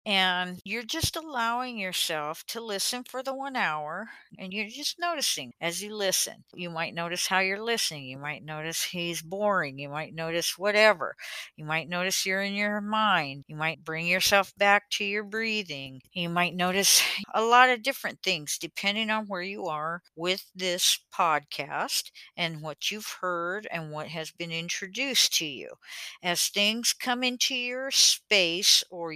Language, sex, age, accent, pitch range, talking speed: English, female, 60-79, American, 165-225 Hz, 170 wpm